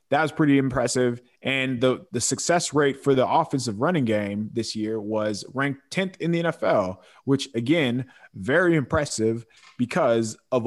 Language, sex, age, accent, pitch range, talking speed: English, male, 20-39, American, 115-155 Hz, 155 wpm